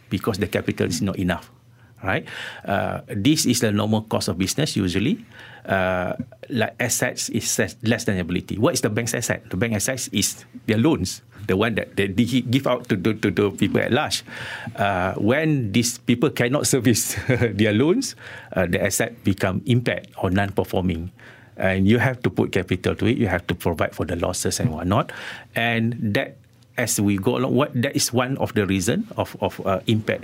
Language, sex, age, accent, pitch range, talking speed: English, male, 50-69, Malaysian, 95-125 Hz, 190 wpm